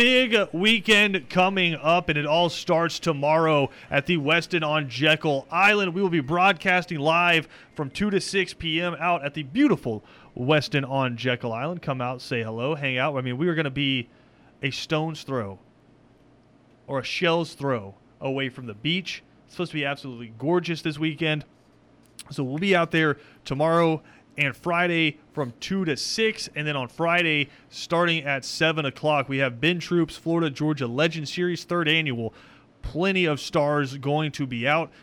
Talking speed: 175 wpm